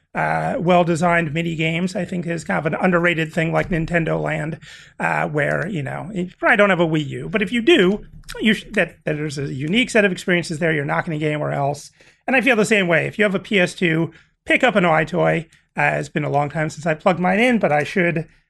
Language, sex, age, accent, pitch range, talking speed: English, male, 30-49, American, 155-200 Hz, 255 wpm